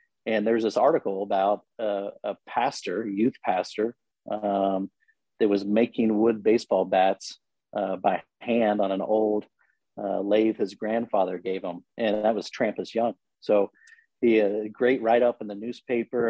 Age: 40-59